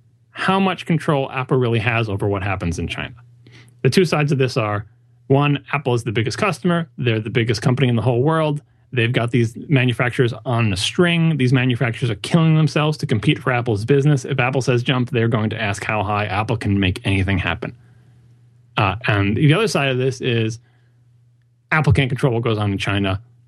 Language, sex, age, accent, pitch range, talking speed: English, male, 30-49, American, 115-140 Hz, 205 wpm